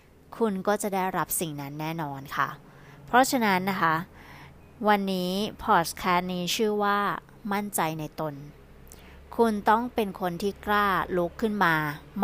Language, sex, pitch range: Thai, female, 155-195 Hz